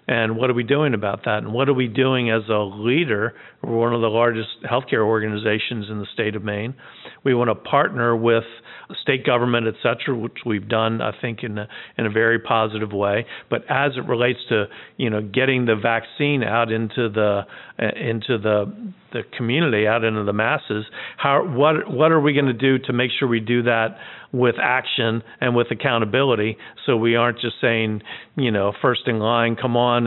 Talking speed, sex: 200 wpm, male